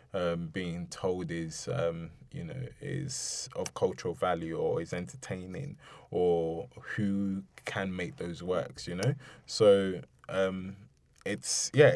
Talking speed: 130 wpm